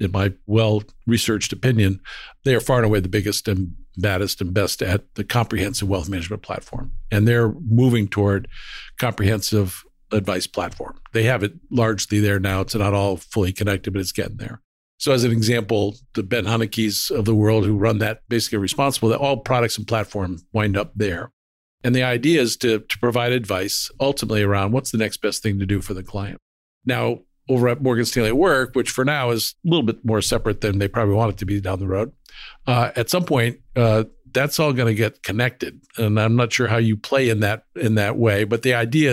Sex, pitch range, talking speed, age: male, 100-120 Hz, 210 wpm, 50-69